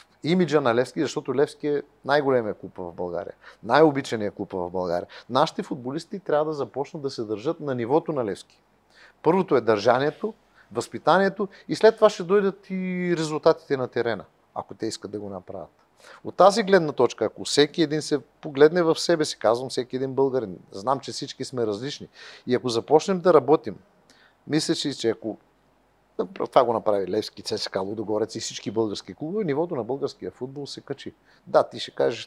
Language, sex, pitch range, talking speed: Bulgarian, male, 110-155 Hz, 175 wpm